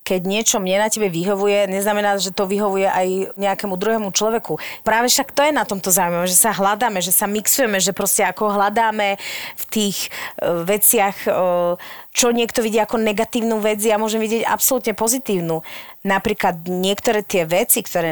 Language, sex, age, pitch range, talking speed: Slovak, female, 30-49, 180-215 Hz, 170 wpm